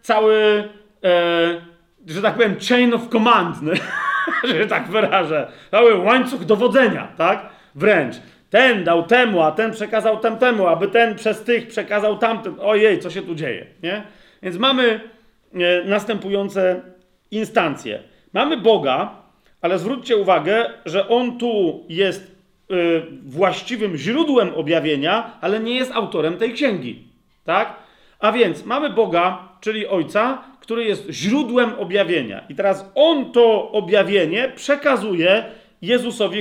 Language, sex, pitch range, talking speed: Polish, male, 185-230 Hz, 130 wpm